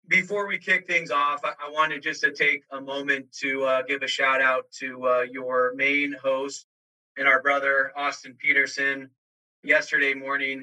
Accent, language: American, English